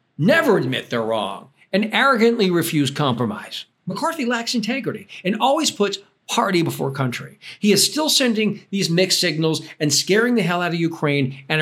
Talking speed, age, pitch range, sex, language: 165 wpm, 50-69, 145-215 Hz, male, English